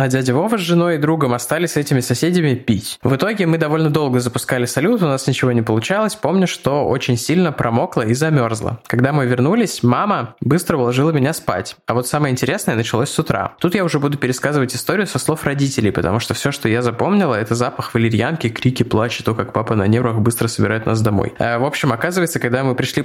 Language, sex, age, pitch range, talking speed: Russian, male, 20-39, 120-150 Hz, 215 wpm